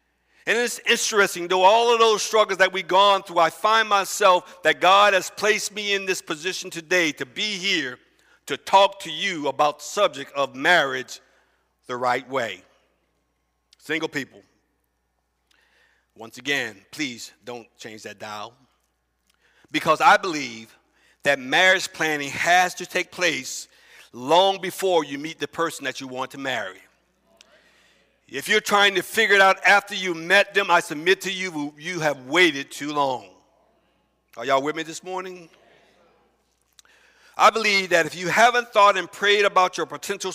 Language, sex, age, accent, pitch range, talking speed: English, male, 50-69, American, 140-190 Hz, 160 wpm